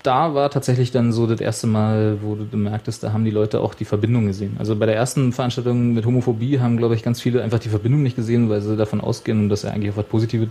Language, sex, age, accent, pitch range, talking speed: German, male, 30-49, German, 110-130 Hz, 265 wpm